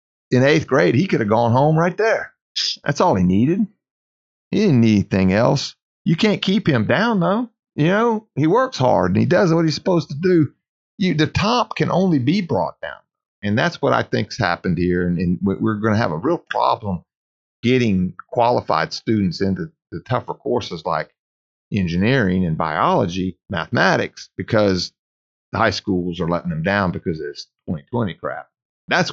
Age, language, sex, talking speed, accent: 40-59, English, male, 180 wpm, American